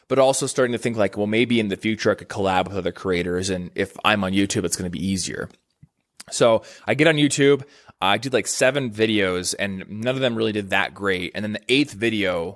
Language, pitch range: English, 95-120 Hz